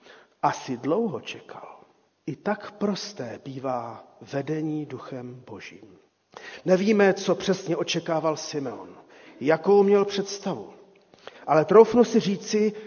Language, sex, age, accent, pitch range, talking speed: Czech, male, 40-59, native, 145-195 Hz, 105 wpm